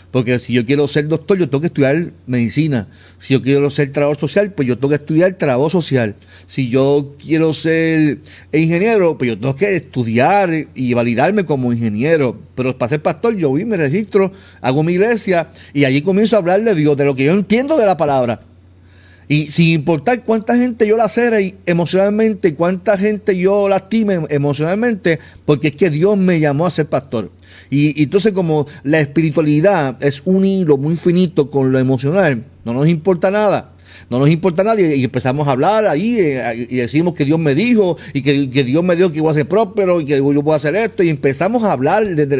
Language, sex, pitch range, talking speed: Spanish, male, 130-190 Hz, 205 wpm